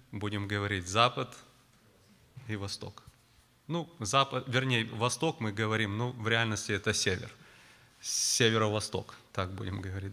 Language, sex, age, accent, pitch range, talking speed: Russian, male, 30-49, native, 110-160 Hz, 120 wpm